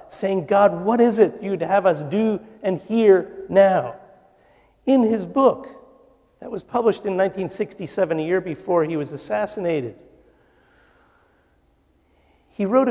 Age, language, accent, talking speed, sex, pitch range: 50-69, English, American, 130 wpm, male, 185-225 Hz